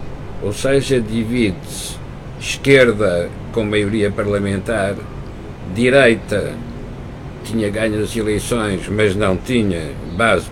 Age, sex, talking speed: 60-79, male, 90 wpm